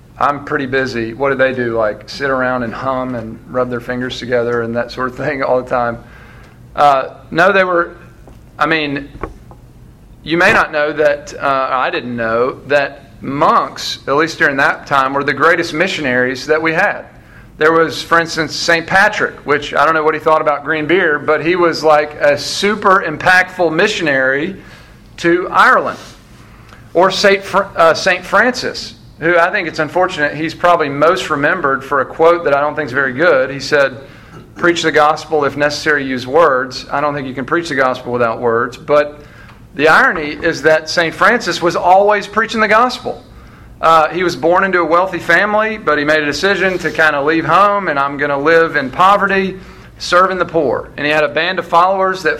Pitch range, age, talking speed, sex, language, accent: 135-175 Hz, 40-59, 195 wpm, male, English, American